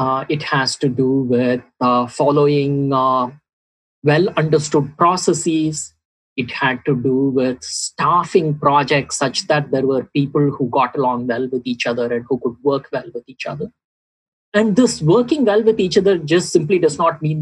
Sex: male